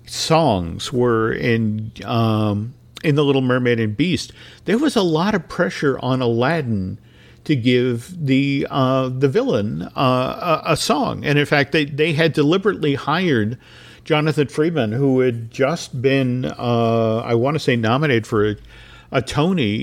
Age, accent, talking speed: 50-69, American, 155 wpm